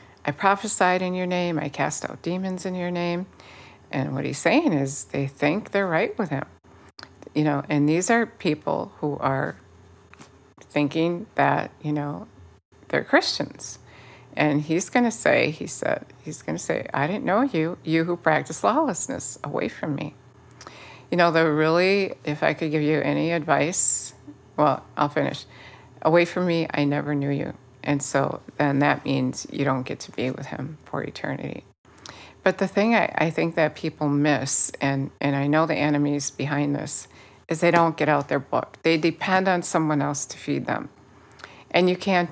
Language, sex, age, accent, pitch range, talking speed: English, female, 60-79, American, 140-170 Hz, 185 wpm